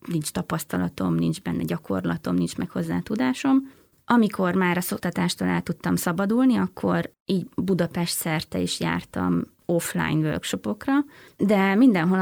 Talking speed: 130 wpm